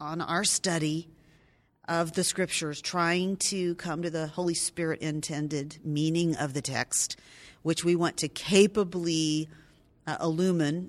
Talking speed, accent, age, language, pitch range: 130 wpm, American, 40-59, English, 155-190 Hz